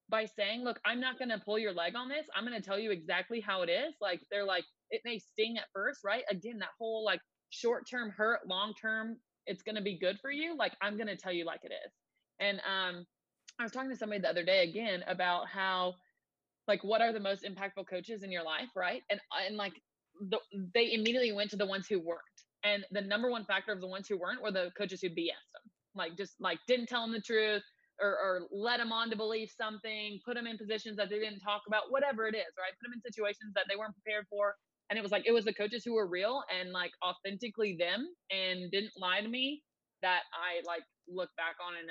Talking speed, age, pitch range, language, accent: 245 wpm, 20-39, 180-220 Hz, English, American